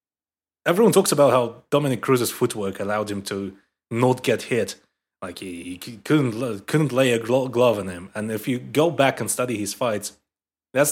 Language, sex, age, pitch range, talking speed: English, male, 30-49, 105-130 Hz, 185 wpm